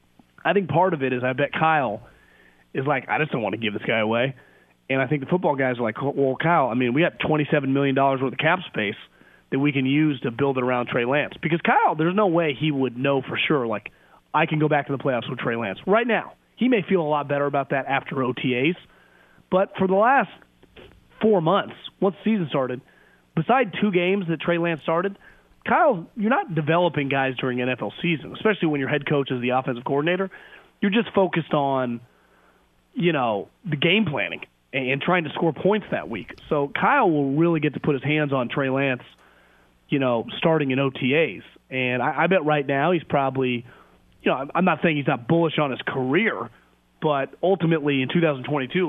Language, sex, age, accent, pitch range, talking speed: English, male, 30-49, American, 130-170 Hz, 215 wpm